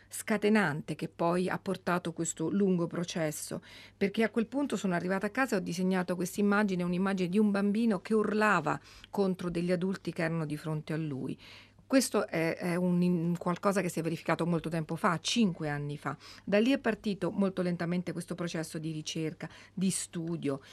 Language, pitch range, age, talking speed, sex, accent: Italian, 160-195 Hz, 40-59, 180 wpm, female, native